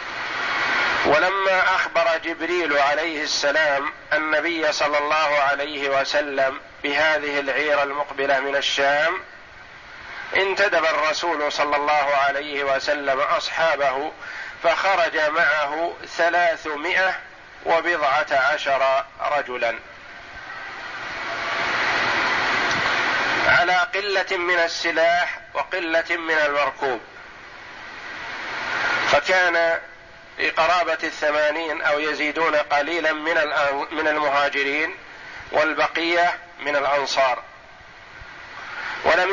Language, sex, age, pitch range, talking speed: Arabic, male, 50-69, 145-180 Hz, 70 wpm